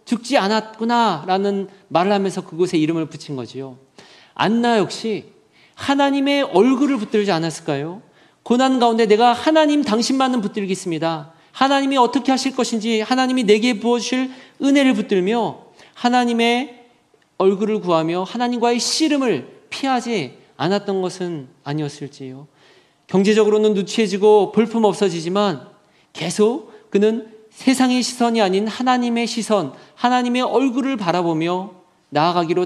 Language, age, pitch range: Korean, 40-59, 165-235 Hz